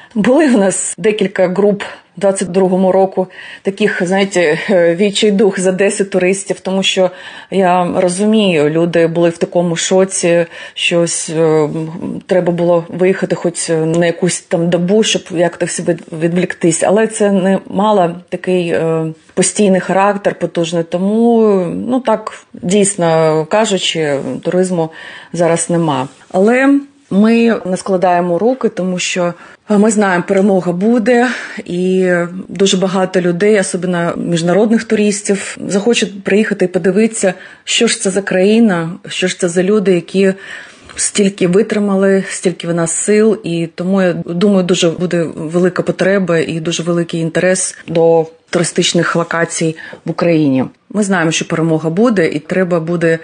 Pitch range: 170-200 Hz